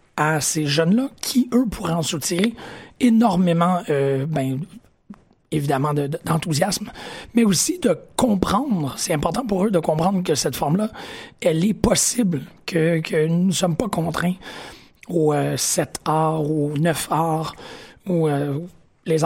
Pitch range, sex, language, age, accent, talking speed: 155-195 Hz, male, French, 40-59, Canadian, 150 wpm